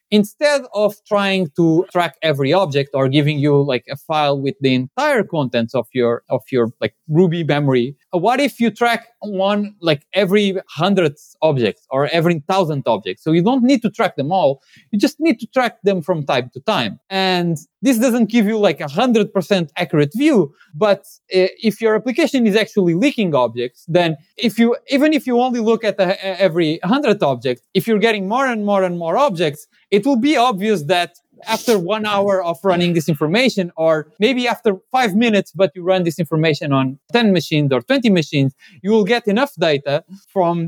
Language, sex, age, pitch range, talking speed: English, male, 20-39, 150-215 Hz, 195 wpm